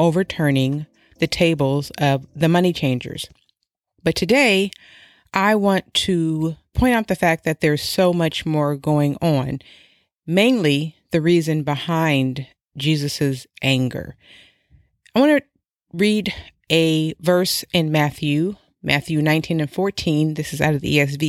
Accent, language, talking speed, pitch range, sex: American, English, 130 wpm, 140-175 Hz, female